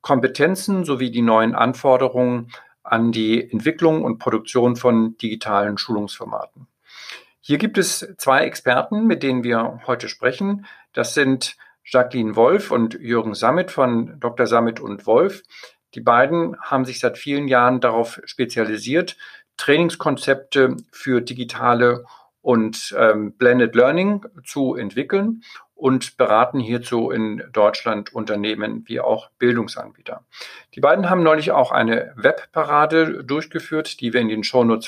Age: 50-69